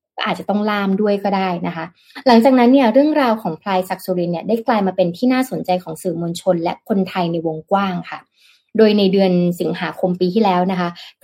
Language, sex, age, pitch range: Thai, female, 20-39, 175-225 Hz